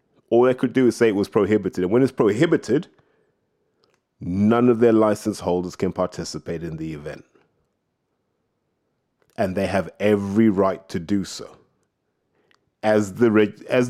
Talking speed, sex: 140 wpm, male